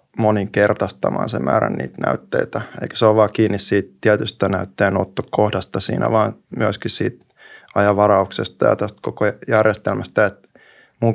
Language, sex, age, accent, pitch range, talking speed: Finnish, male, 20-39, native, 100-110 Hz, 130 wpm